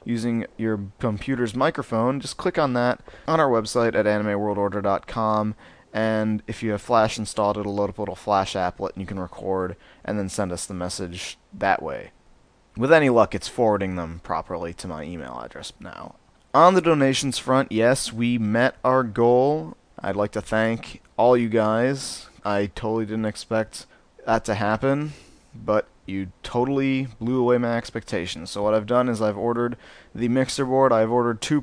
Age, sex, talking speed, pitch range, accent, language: 30-49, male, 175 wpm, 100-125 Hz, American, English